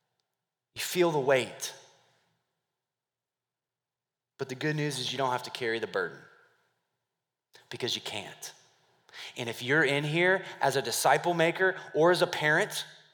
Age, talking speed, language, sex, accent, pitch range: 20-39, 145 wpm, English, male, American, 130-180 Hz